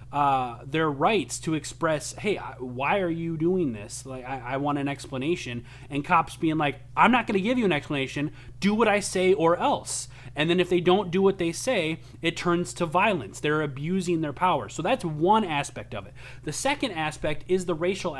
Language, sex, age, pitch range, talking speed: English, male, 30-49, 125-180 Hz, 210 wpm